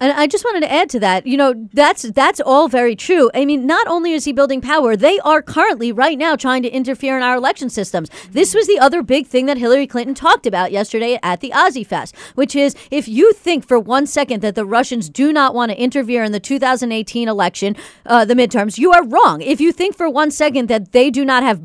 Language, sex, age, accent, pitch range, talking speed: English, female, 40-59, American, 240-290 Hz, 245 wpm